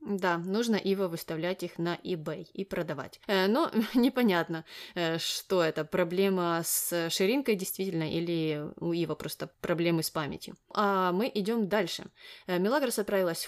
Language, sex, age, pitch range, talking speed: Russian, female, 20-39, 180-230 Hz, 135 wpm